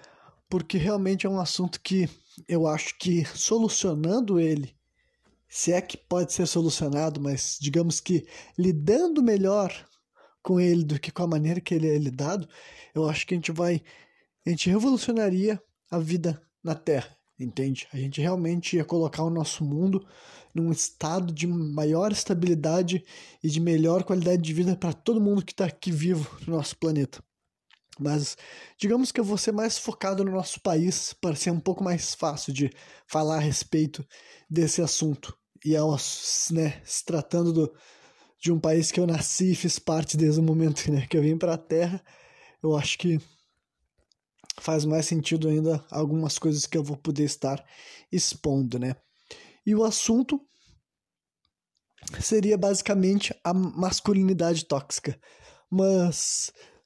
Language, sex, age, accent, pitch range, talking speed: Portuguese, male, 20-39, Brazilian, 155-190 Hz, 155 wpm